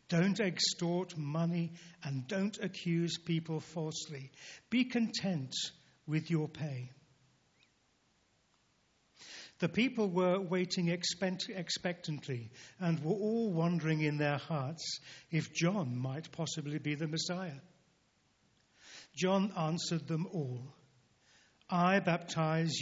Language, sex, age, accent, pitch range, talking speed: English, male, 50-69, British, 145-180 Hz, 100 wpm